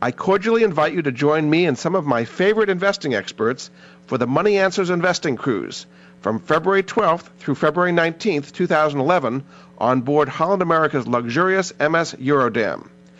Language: English